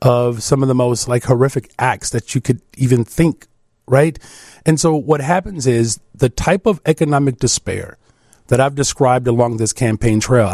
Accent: American